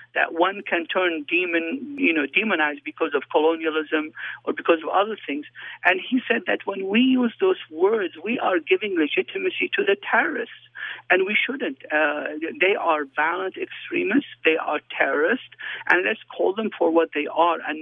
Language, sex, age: English, male, 60-79